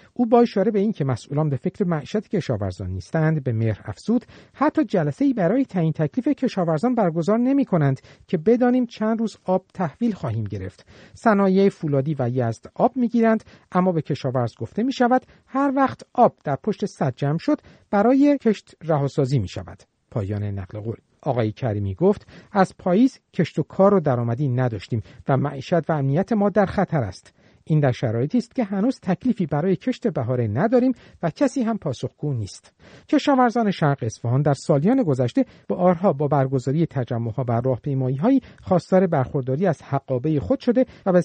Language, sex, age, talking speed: Persian, male, 50-69, 170 wpm